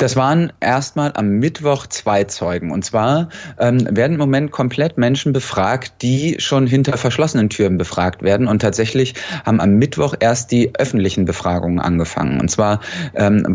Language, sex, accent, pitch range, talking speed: German, male, German, 100-125 Hz, 160 wpm